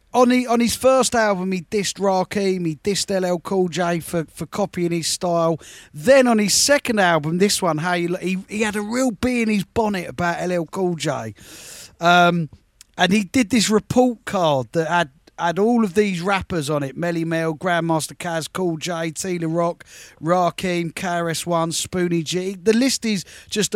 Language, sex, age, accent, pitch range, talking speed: English, male, 30-49, British, 160-200 Hz, 180 wpm